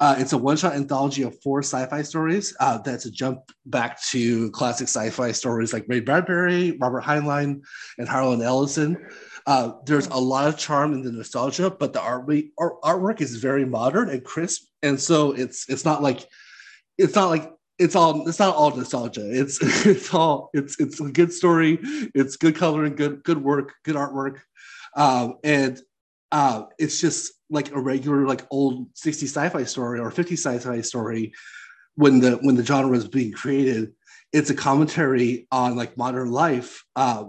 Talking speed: 175 wpm